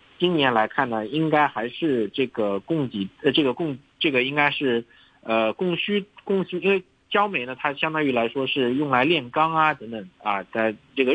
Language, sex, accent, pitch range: Chinese, male, native, 125-180 Hz